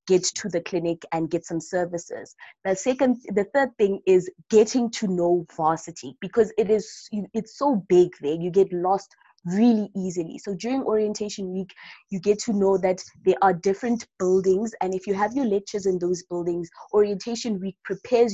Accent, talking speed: South African, 180 wpm